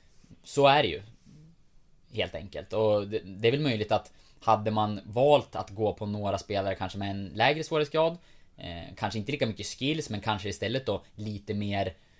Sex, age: male, 20-39